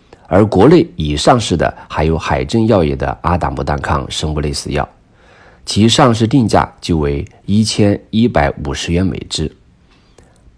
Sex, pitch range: male, 75-105 Hz